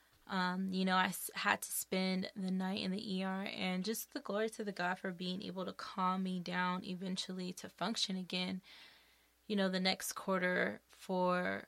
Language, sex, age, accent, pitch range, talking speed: English, female, 20-39, American, 185-205 Hz, 185 wpm